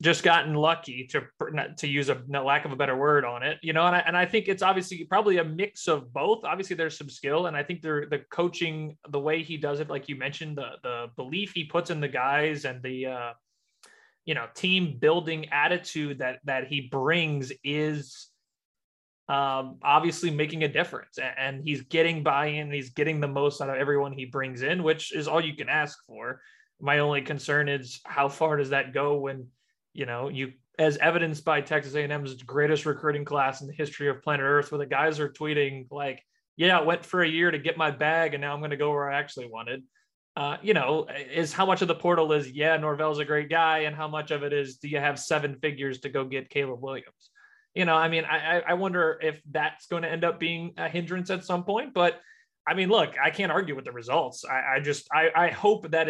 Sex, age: male, 20-39